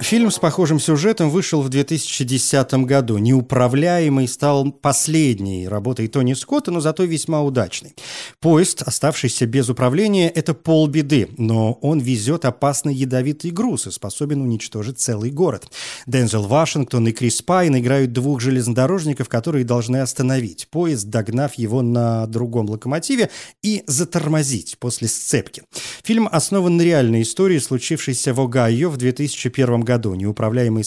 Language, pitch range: Russian, 115-155 Hz